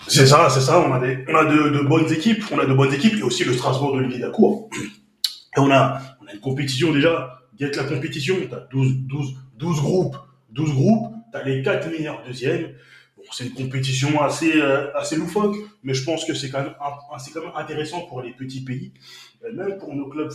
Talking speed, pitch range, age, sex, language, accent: 230 wpm, 130-165 Hz, 20-39, male, French, French